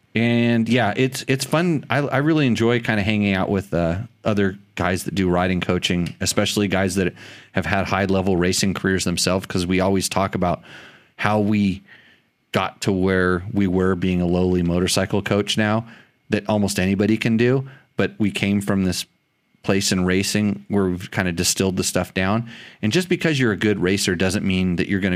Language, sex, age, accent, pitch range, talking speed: English, male, 30-49, American, 95-110 Hz, 195 wpm